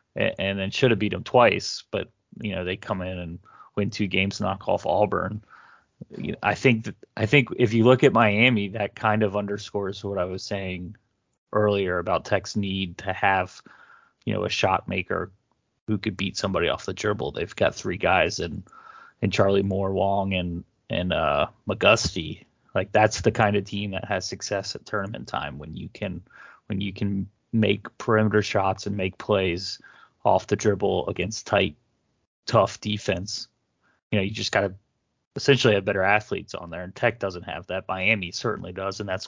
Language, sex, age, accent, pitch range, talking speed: English, male, 30-49, American, 95-110 Hz, 185 wpm